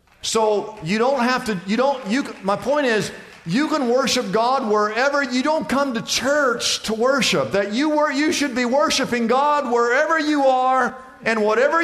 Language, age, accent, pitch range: English, 50-69, American, 180-255 Hz